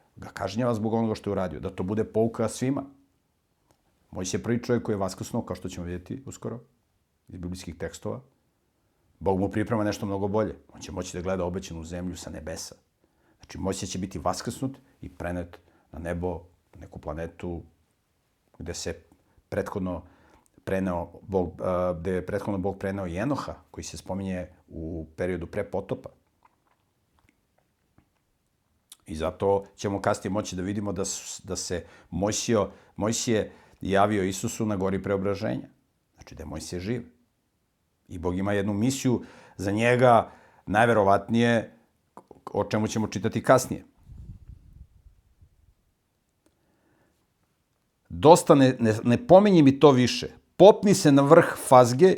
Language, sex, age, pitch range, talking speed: English, male, 50-69, 90-120 Hz, 135 wpm